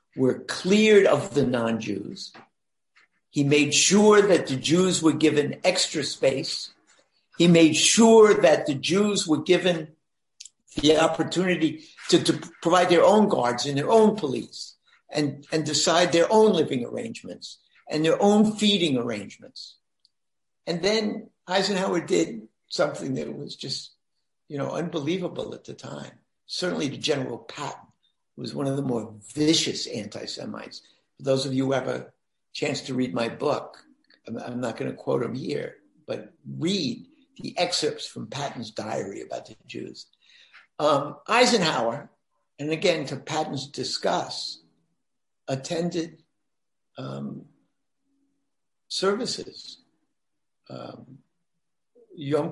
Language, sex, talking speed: English, male, 130 wpm